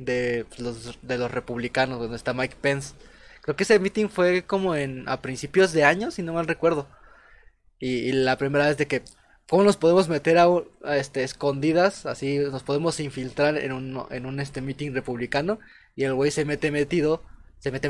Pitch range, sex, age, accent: 130-160 Hz, male, 20-39, Mexican